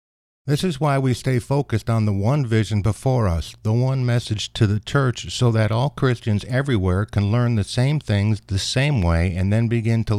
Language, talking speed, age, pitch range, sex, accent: English, 205 wpm, 60-79, 95-115 Hz, male, American